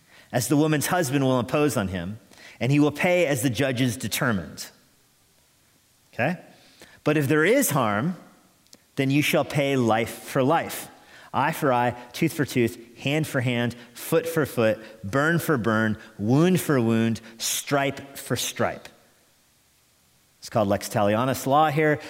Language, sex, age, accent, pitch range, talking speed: English, male, 40-59, American, 110-140 Hz, 150 wpm